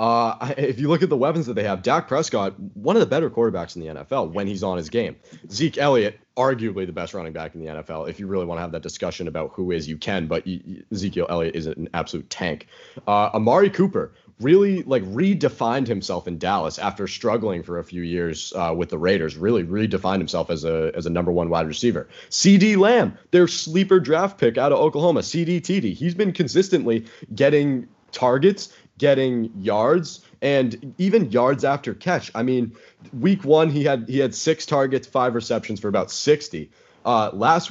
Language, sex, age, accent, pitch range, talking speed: English, male, 30-49, American, 95-160 Hz, 200 wpm